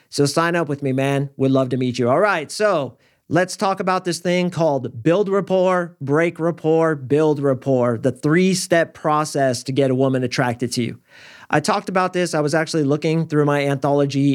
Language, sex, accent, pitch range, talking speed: English, male, American, 135-155 Hz, 195 wpm